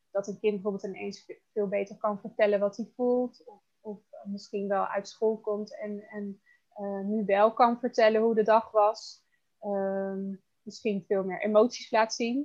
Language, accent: Dutch, Dutch